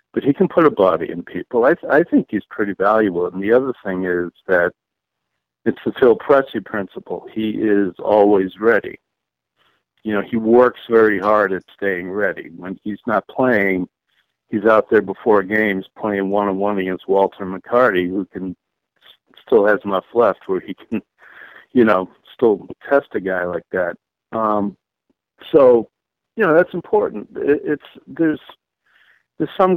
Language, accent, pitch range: English, American, 95-120 Hz